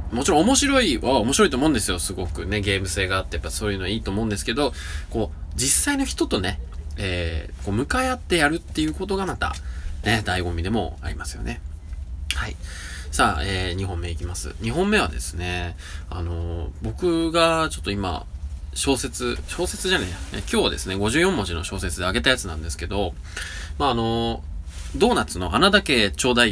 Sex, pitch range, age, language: male, 80-120 Hz, 20-39, Japanese